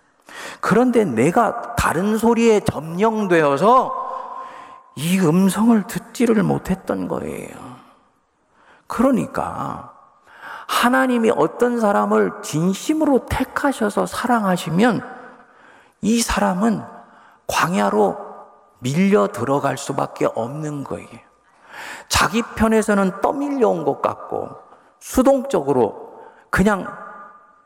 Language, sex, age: Korean, male, 40-59